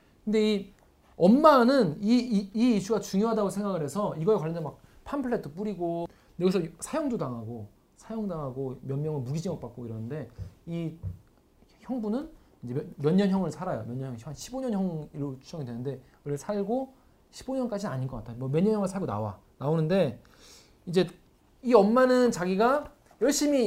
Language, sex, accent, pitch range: Korean, male, native, 140-205 Hz